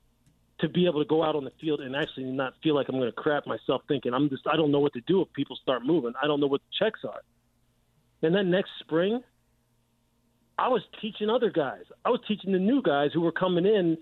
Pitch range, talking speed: 140-185 Hz, 250 wpm